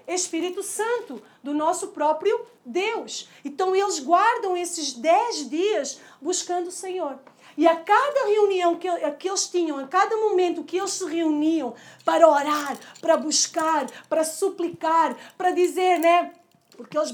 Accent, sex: Brazilian, female